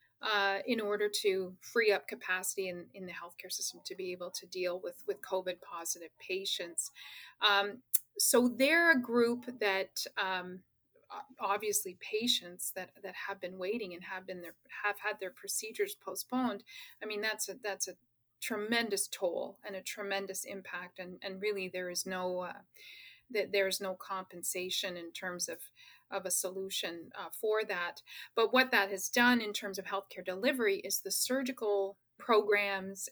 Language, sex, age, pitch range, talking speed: English, female, 30-49, 185-225 Hz, 165 wpm